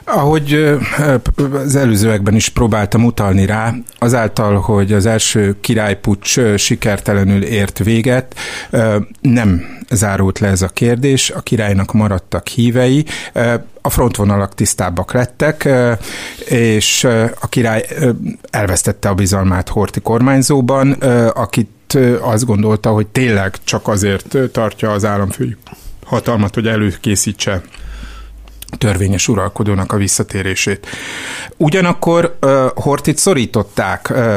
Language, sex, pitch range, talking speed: Hungarian, male, 100-125 Hz, 100 wpm